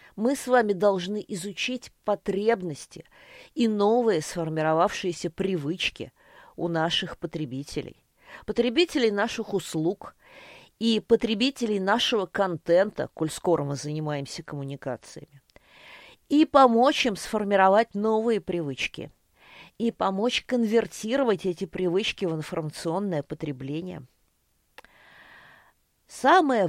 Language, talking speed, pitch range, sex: Russian, 90 wpm, 165-230 Hz, female